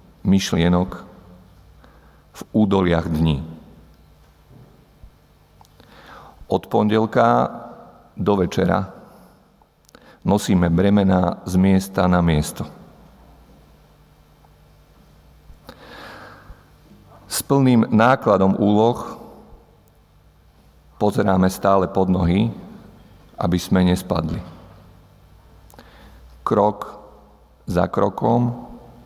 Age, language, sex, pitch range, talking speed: 50-69, Slovak, male, 80-105 Hz, 60 wpm